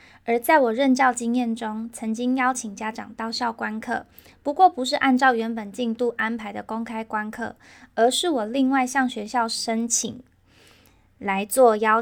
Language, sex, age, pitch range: Chinese, female, 20-39, 215-260 Hz